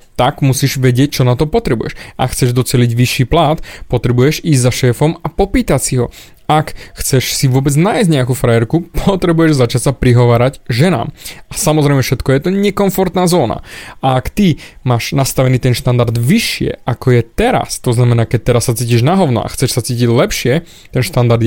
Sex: male